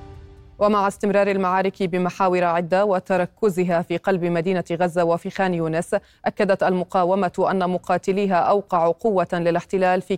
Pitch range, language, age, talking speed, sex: 175-200 Hz, Arabic, 20-39, 125 wpm, female